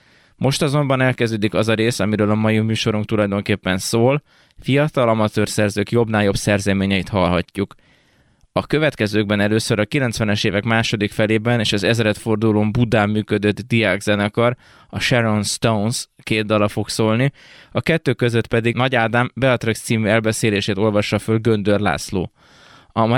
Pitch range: 105-115 Hz